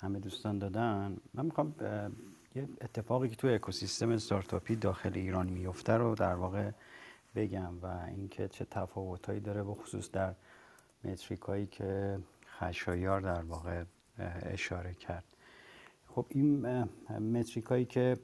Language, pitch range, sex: Persian, 95-115 Hz, male